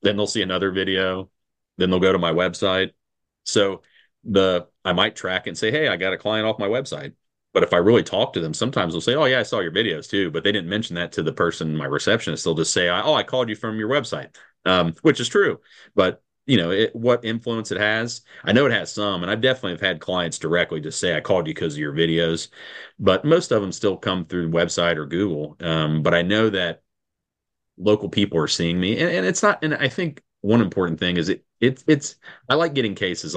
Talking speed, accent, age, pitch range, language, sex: 245 wpm, American, 30-49, 85-110 Hz, English, male